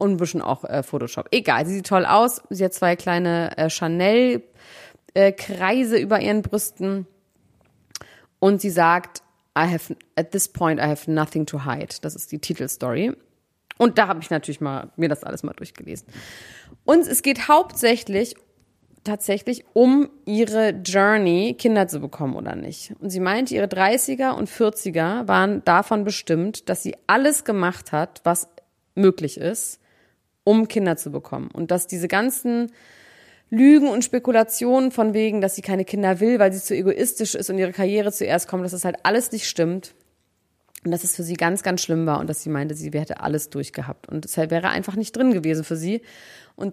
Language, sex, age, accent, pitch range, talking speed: German, female, 30-49, German, 170-220 Hz, 180 wpm